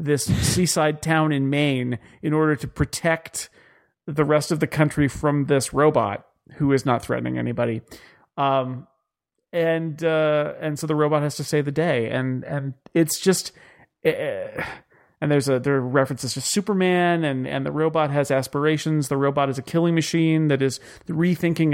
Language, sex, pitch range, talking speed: English, male, 135-155 Hz, 170 wpm